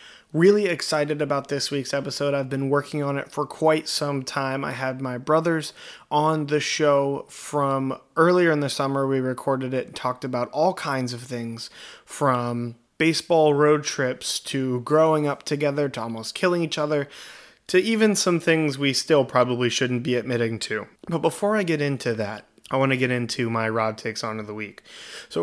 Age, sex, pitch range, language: 20-39, male, 130-155 Hz, English